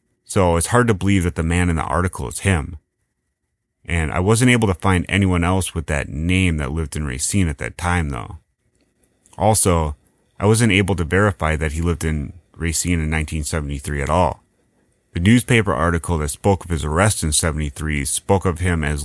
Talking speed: 190 wpm